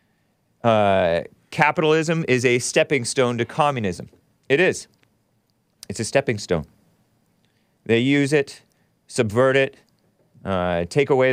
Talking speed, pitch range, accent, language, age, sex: 115 wpm, 105-145 Hz, American, English, 40-59, male